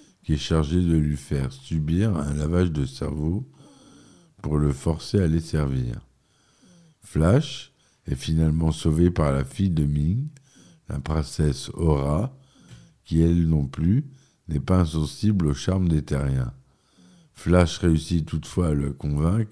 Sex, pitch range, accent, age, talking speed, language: male, 75-95 Hz, French, 50-69, 140 wpm, French